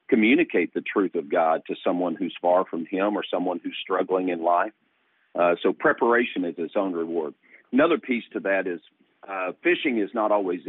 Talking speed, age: 190 wpm, 50-69